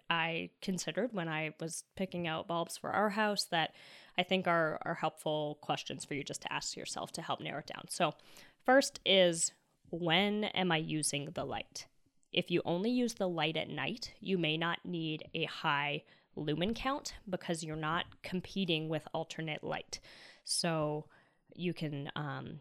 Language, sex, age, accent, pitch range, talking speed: English, female, 10-29, American, 160-195 Hz, 175 wpm